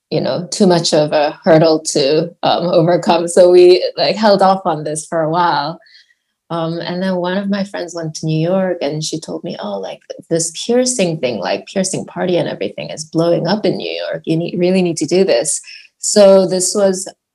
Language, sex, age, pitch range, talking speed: English, female, 20-39, 160-185 Hz, 200 wpm